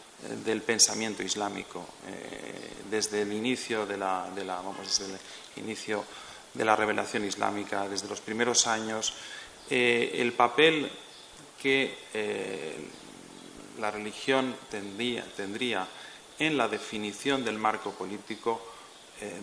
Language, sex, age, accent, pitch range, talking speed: Spanish, male, 40-59, Spanish, 105-130 Hz, 120 wpm